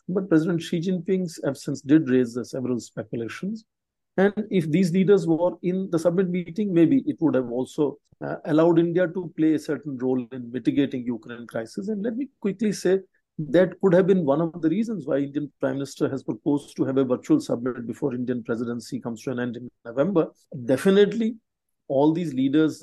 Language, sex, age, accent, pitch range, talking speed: English, male, 50-69, Indian, 130-180 Hz, 195 wpm